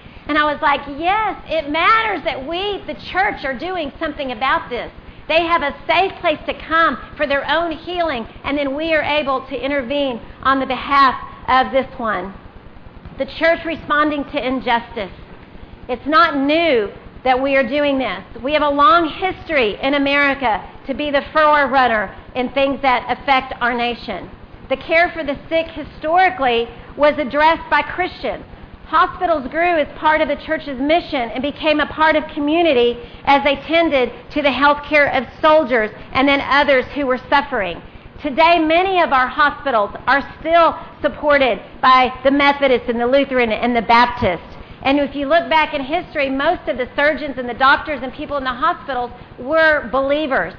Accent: American